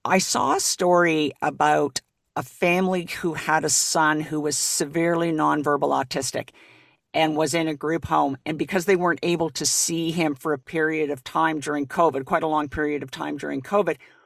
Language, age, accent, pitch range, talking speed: English, 50-69, American, 150-185 Hz, 190 wpm